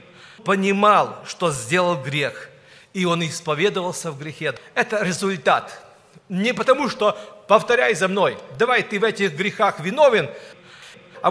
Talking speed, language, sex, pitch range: 125 wpm, Russian, male, 190-240 Hz